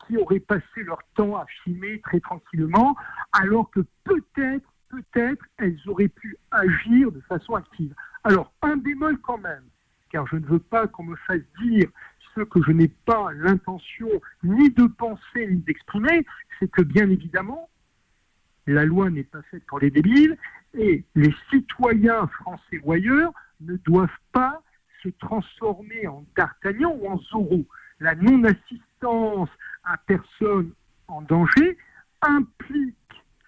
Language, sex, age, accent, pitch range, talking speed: French, male, 60-79, French, 180-255 Hz, 140 wpm